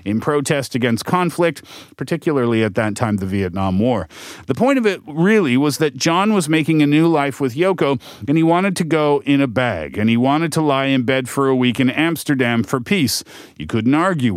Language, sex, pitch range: Korean, male, 125-165 Hz